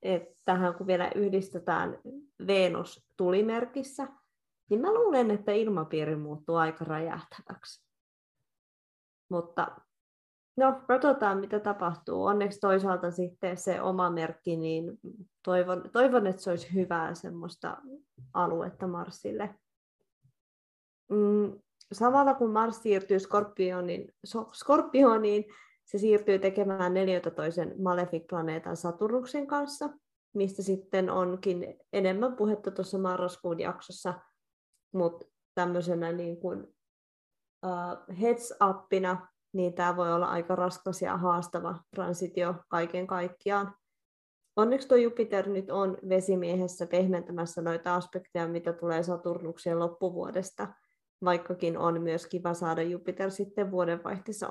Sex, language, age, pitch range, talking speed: female, Finnish, 20-39, 175-205 Hz, 105 wpm